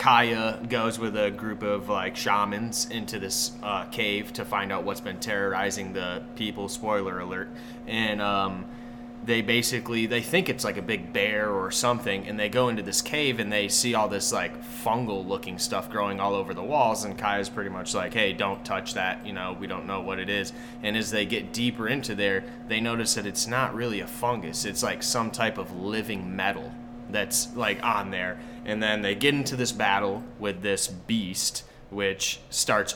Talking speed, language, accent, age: 200 wpm, English, American, 20-39